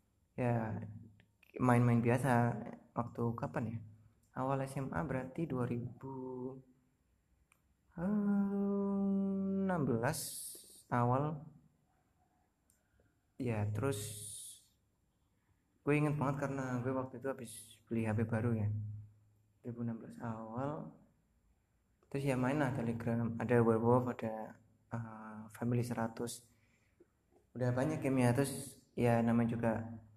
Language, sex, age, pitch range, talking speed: Indonesian, male, 20-39, 110-130 Hz, 95 wpm